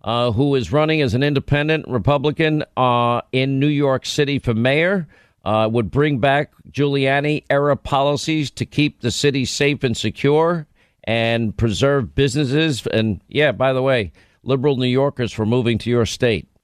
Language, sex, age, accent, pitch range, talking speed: English, male, 50-69, American, 120-155 Hz, 160 wpm